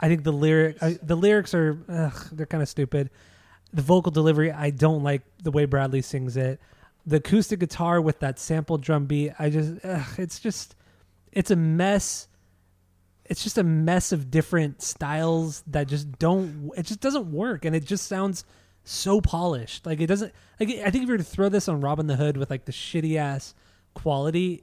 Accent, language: American, English